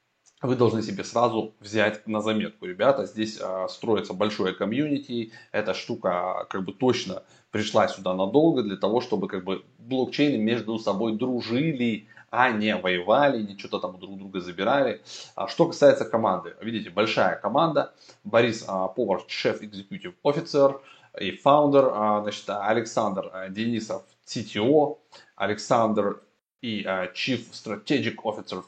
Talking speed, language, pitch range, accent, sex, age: 130 wpm, Russian, 105-135 Hz, native, male, 20-39